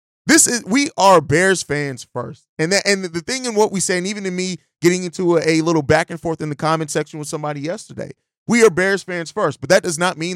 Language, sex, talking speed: English, male, 260 wpm